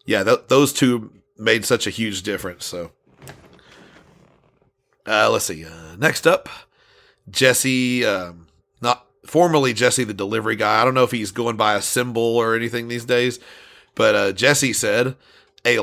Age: 40-59